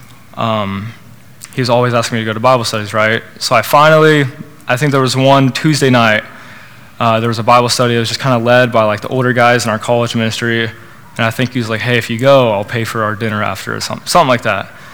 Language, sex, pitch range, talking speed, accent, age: English, male, 110-130 Hz, 255 wpm, American, 20-39